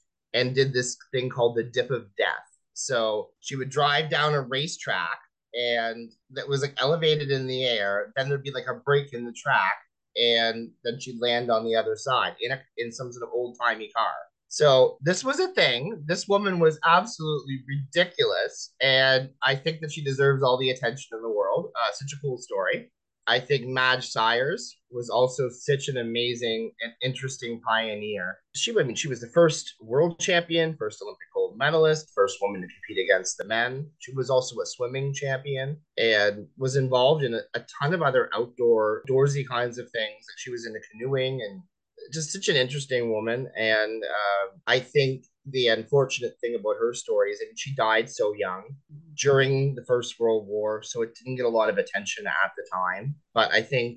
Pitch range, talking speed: 120-160 Hz, 190 wpm